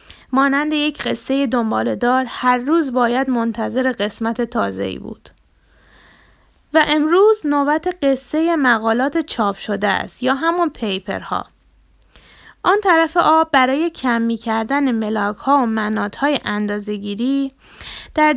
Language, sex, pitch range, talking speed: Persian, female, 225-300 Hz, 120 wpm